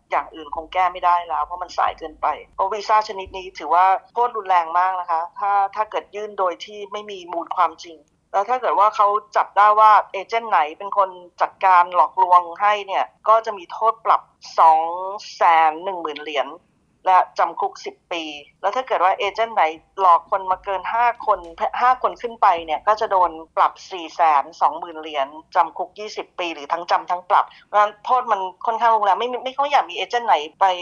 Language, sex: Thai, female